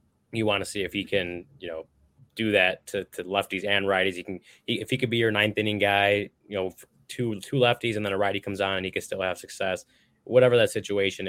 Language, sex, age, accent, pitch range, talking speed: English, male, 20-39, American, 90-110 Hz, 250 wpm